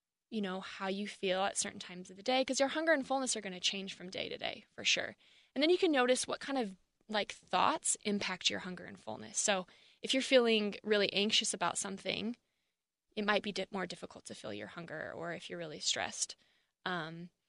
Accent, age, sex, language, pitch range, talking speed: American, 20-39, female, English, 185-230 Hz, 220 wpm